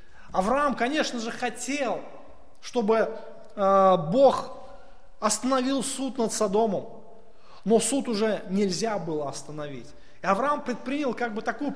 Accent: native